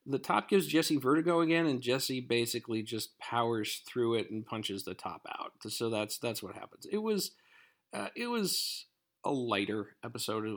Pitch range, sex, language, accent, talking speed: 105-155 Hz, male, English, American, 175 wpm